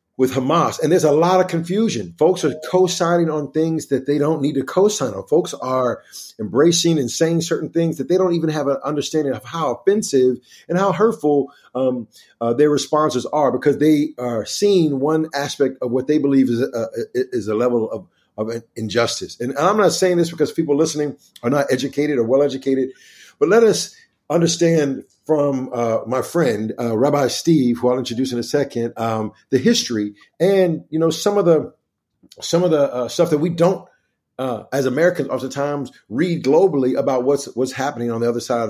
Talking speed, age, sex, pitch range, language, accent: 190 wpm, 50-69, male, 120-160 Hz, English, American